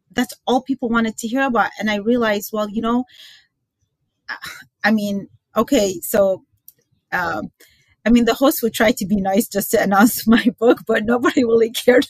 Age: 30-49